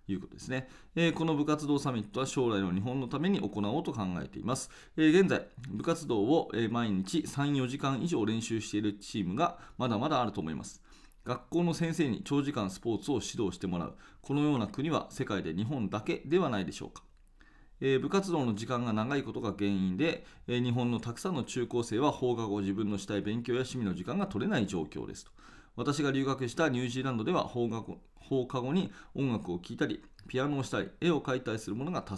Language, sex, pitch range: Japanese, male, 105-140 Hz